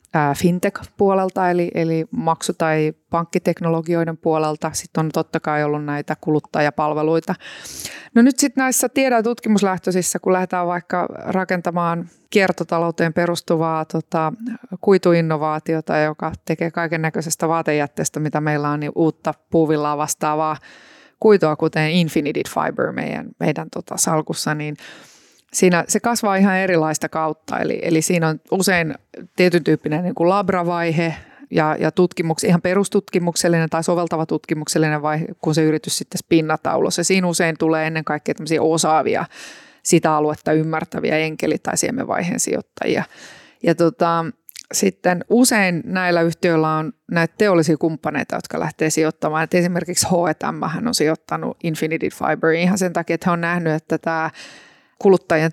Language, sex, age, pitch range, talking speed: Finnish, female, 30-49, 155-180 Hz, 130 wpm